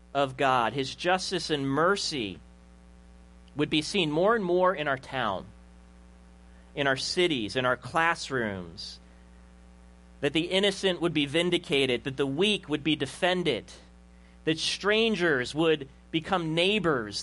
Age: 40-59